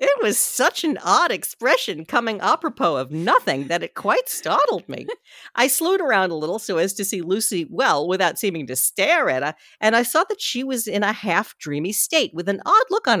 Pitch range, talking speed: 170-265 Hz, 215 wpm